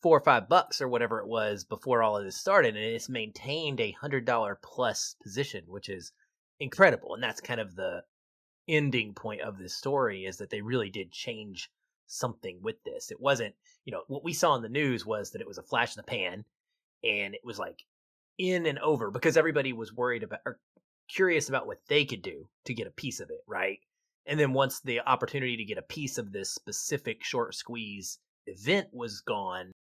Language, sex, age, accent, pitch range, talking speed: English, male, 30-49, American, 110-165 Hz, 210 wpm